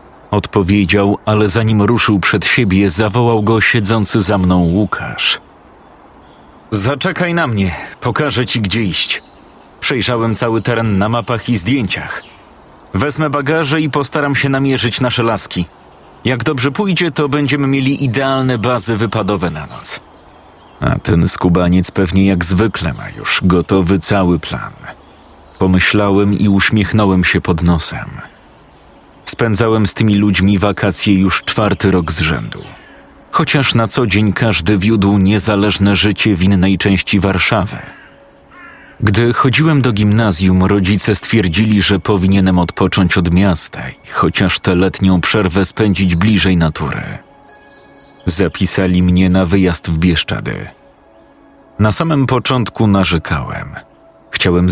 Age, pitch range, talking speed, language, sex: 40-59, 95-115 Hz, 125 wpm, Polish, male